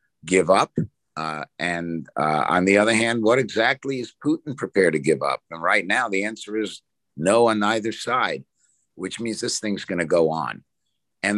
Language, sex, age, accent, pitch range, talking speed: English, male, 60-79, American, 90-115 Hz, 190 wpm